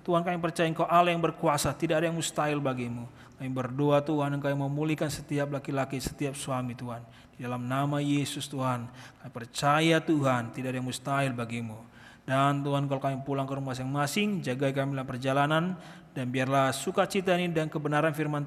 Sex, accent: male, native